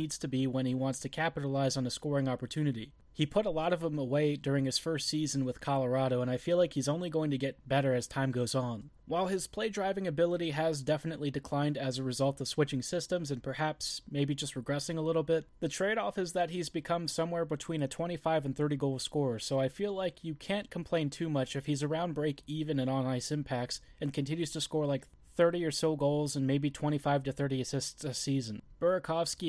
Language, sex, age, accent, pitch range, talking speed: English, male, 20-39, American, 140-165 Hz, 225 wpm